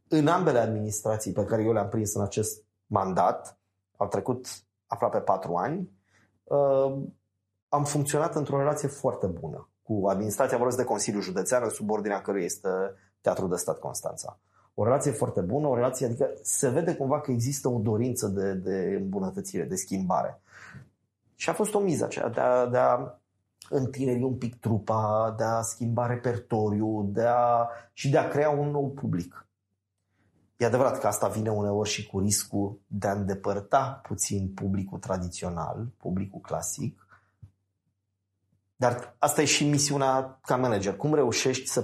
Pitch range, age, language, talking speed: 100-130 Hz, 30-49, Romanian, 150 wpm